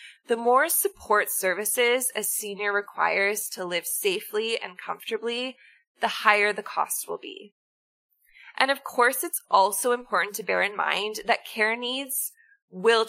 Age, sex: 20-39, female